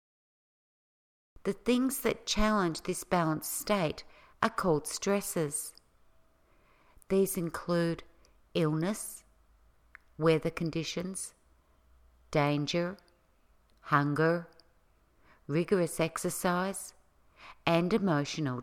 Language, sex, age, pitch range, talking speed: English, female, 50-69, 140-195 Hz, 70 wpm